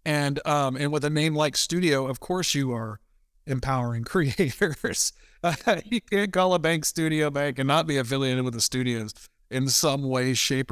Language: English